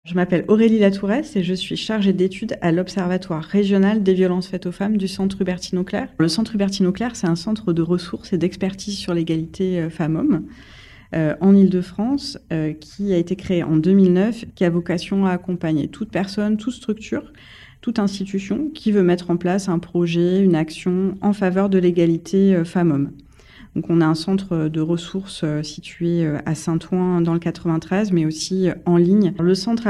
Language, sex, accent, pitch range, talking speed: French, female, French, 170-195 Hz, 175 wpm